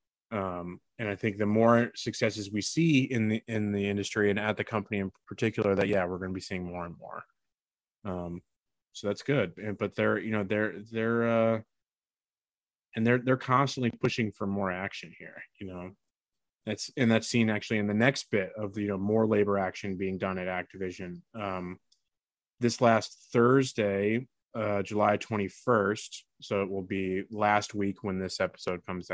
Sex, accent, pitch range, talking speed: male, American, 100-115 Hz, 180 wpm